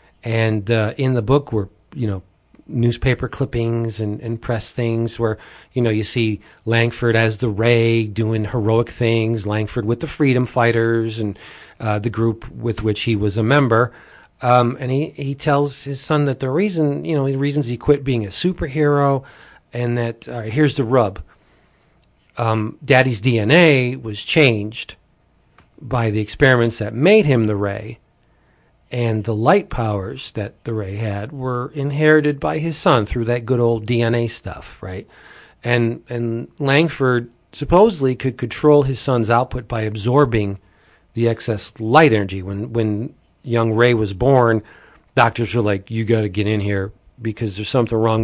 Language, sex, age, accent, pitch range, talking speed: English, male, 40-59, American, 110-130 Hz, 165 wpm